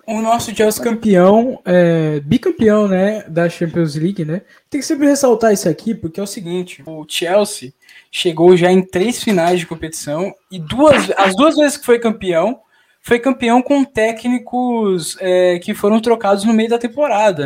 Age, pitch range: 10-29, 165-225 Hz